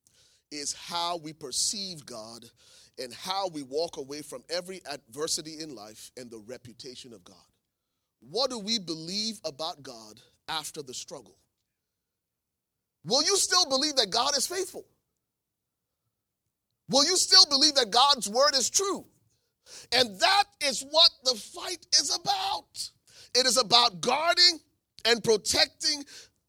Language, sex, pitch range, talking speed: English, male, 150-250 Hz, 135 wpm